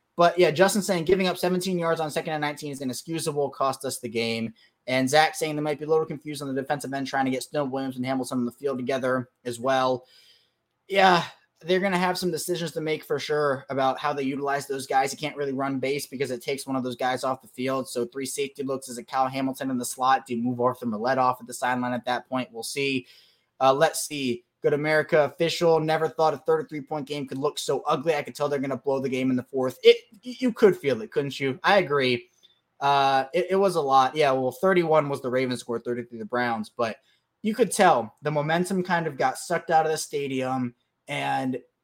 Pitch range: 130-165 Hz